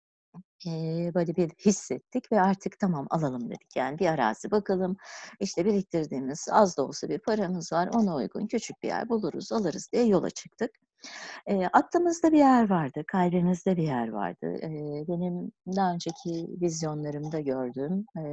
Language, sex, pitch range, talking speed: Turkish, female, 150-220 Hz, 145 wpm